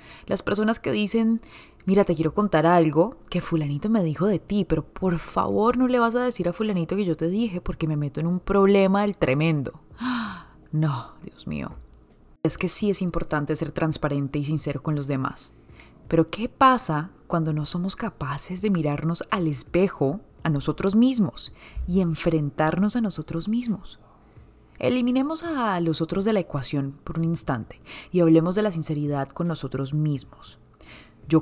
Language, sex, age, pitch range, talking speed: English, female, 20-39, 145-190 Hz, 170 wpm